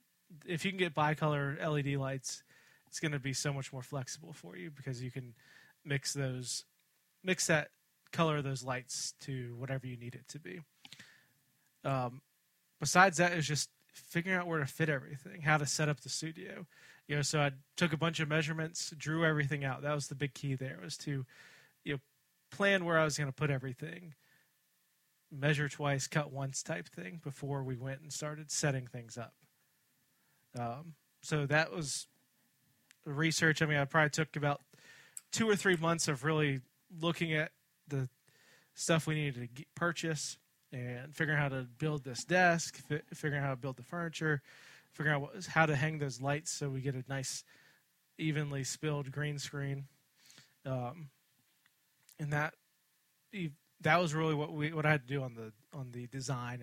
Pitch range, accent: 135-160 Hz, American